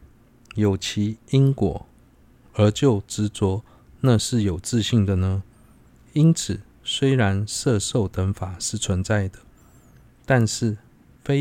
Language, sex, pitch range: Chinese, male, 100-125 Hz